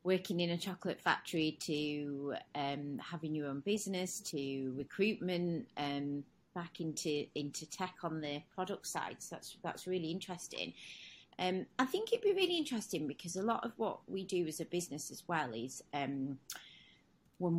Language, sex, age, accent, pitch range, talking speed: English, female, 30-49, British, 150-185 Hz, 170 wpm